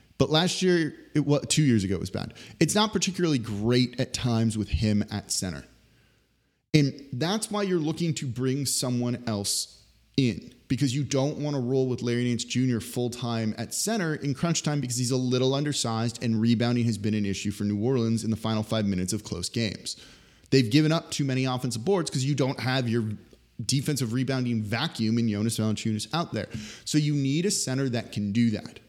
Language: English